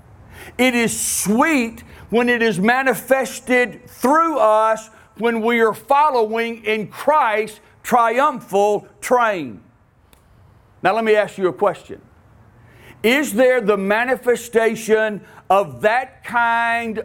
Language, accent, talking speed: English, American, 110 wpm